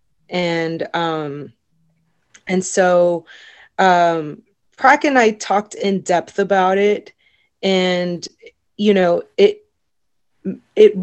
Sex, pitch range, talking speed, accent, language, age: female, 165-195 Hz, 100 wpm, American, English, 20-39